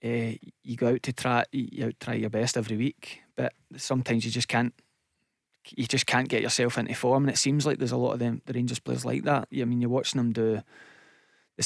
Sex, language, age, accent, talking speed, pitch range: male, English, 20-39, British, 235 wpm, 120-135 Hz